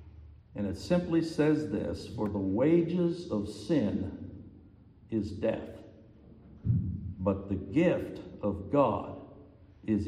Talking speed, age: 105 wpm, 60-79